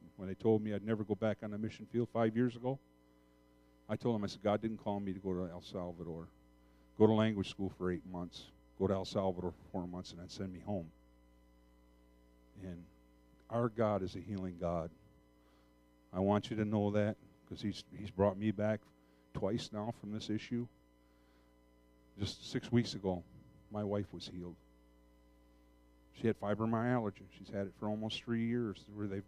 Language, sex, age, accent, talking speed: English, male, 50-69, American, 190 wpm